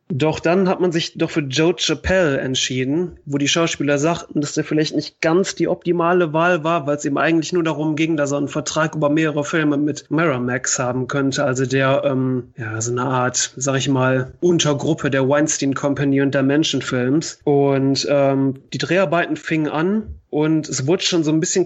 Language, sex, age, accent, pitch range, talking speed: German, male, 30-49, German, 140-165 Hz, 195 wpm